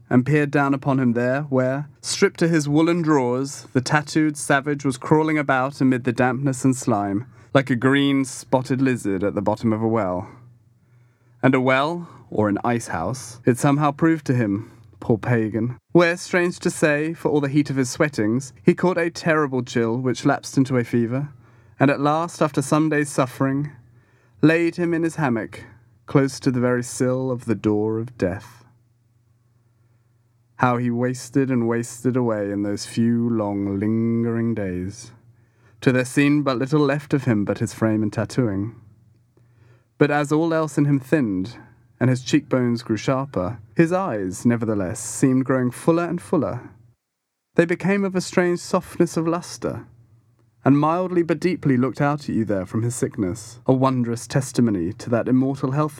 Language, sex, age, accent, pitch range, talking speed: English, male, 30-49, British, 115-145 Hz, 175 wpm